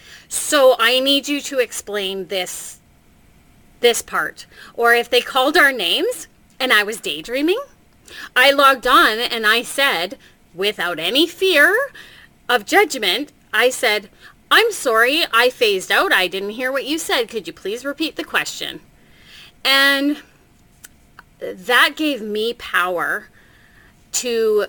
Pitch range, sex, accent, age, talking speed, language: 205-290 Hz, female, American, 30-49, 135 wpm, English